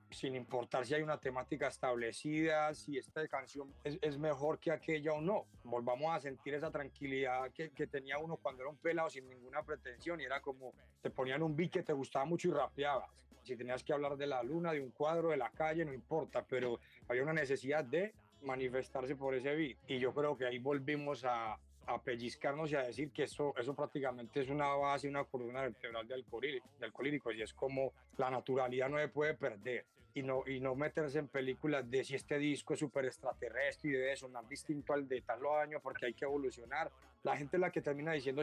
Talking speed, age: 215 wpm, 30-49